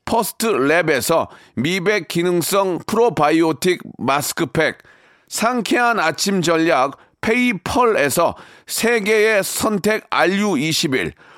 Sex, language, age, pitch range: male, Korean, 40-59, 175-225 Hz